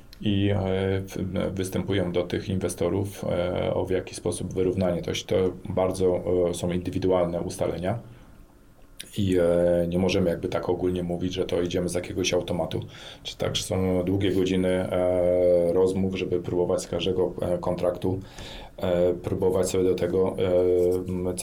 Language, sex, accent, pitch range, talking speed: Polish, male, native, 90-95 Hz, 130 wpm